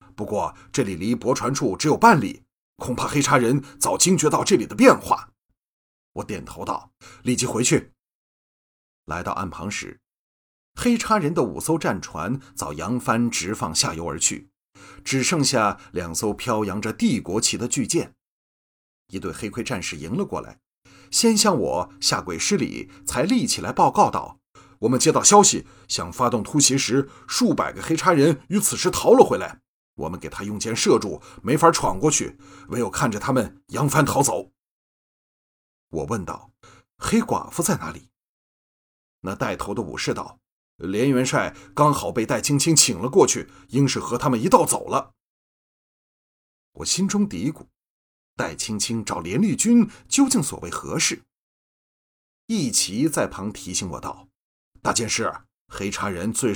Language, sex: Chinese, male